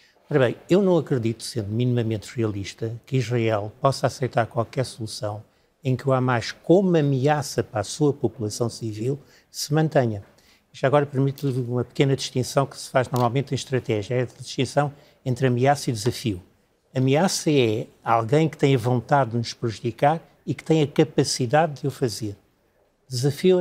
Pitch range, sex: 120-150 Hz, male